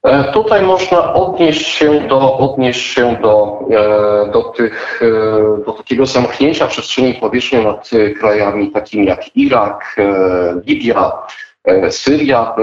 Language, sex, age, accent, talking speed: Polish, male, 40-59, native, 105 wpm